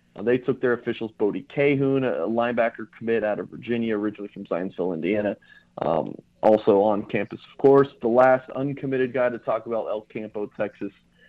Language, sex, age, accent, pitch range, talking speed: English, male, 30-49, American, 105-125 Hz, 170 wpm